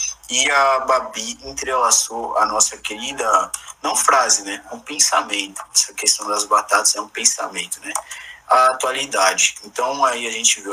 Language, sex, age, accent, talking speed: Portuguese, male, 20-39, Brazilian, 150 wpm